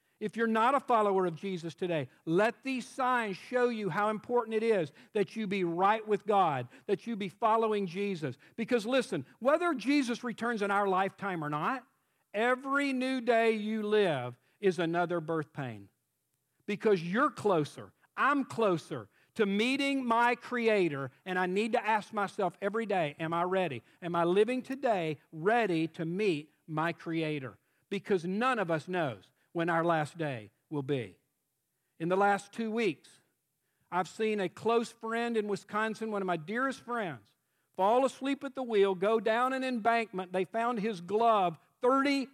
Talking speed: 165 wpm